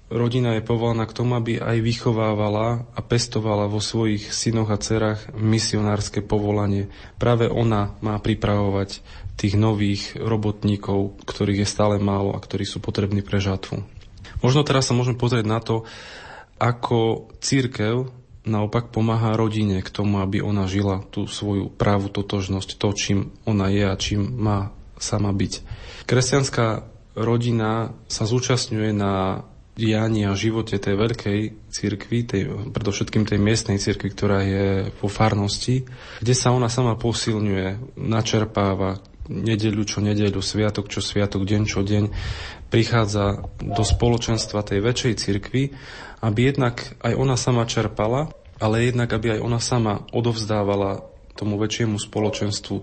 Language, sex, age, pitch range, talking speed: Slovak, male, 20-39, 100-115 Hz, 135 wpm